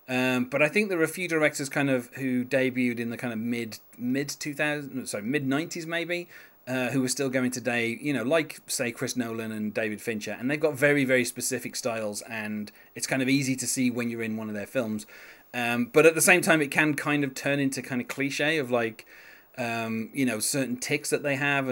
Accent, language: British, English